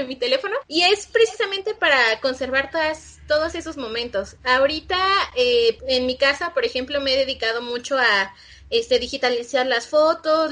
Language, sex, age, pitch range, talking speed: Spanish, female, 20-39, 255-330 Hz, 150 wpm